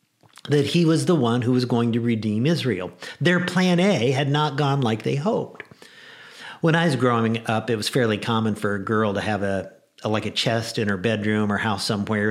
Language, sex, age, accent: English, male, 50-69, American